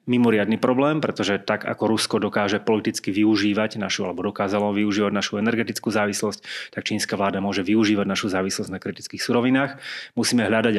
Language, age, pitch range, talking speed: Slovak, 30-49, 100-115 Hz, 155 wpm